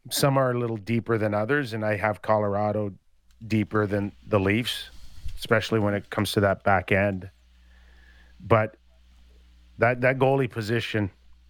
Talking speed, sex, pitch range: 145 wpm, male, 95-125 Hz